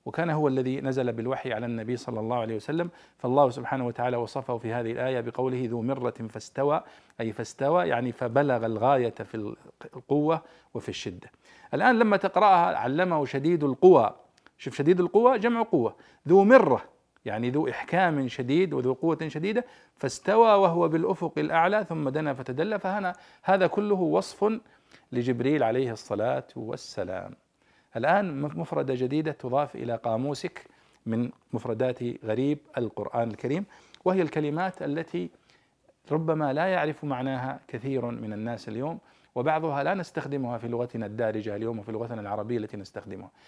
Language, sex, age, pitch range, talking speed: Arabic, male, 50-69, 120-165 Hz, 140 wpm